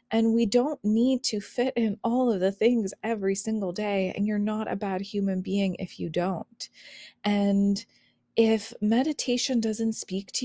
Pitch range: 185-230 Hz